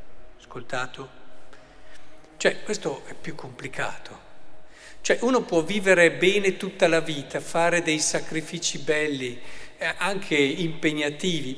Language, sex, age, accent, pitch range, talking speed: Italian, male, 50-69, native, 145-195 Hz, 110 wpm